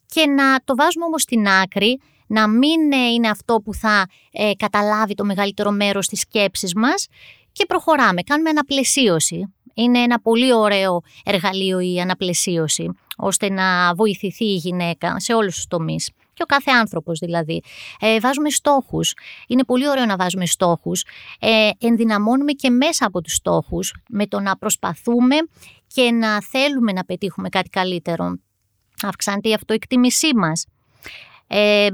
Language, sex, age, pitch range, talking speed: Greek, female, 20-39, 185-245 Hz, 145 wpm